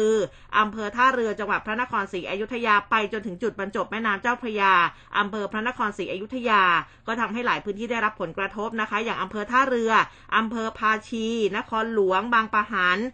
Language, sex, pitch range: Thai, female, 205-255 Hz